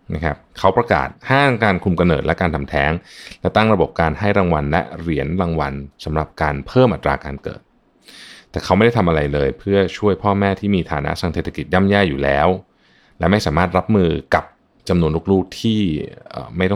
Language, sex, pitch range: Thai, male, 75-100 Hz